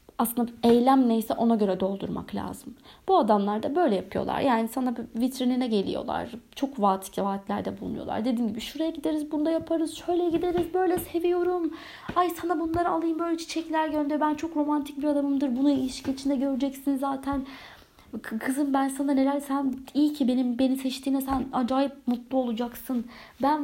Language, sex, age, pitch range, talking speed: Turkish, female, 30-49, 230-290 Hz, 160 wpm